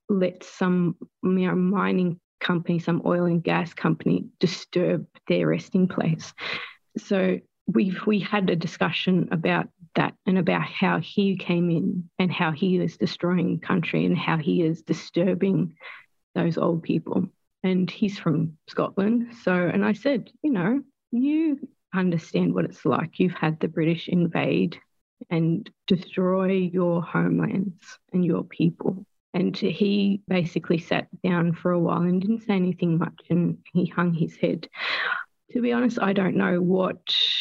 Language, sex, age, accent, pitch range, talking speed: English, female, 30-49, Australian, 175-195 Hz, 150 wpm